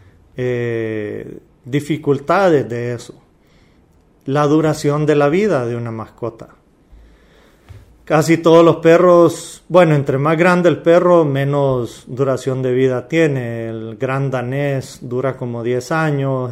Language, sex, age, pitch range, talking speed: Spanish, male, 40-59, 120-155 Hz, 125 wpm